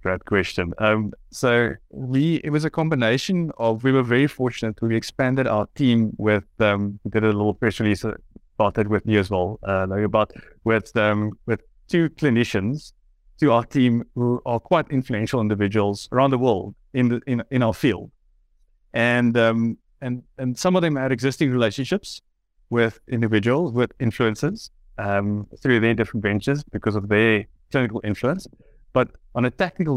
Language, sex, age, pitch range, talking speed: English, male, 30-49, 105-130 Hz, 170 wpm